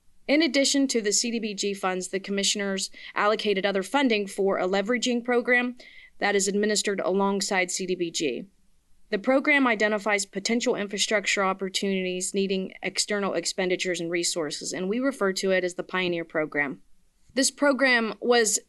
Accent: American